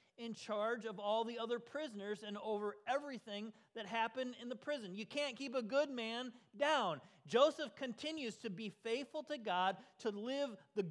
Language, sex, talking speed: English, male, 175 wpm